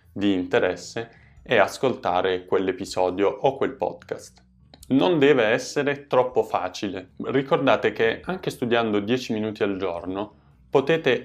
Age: 20-39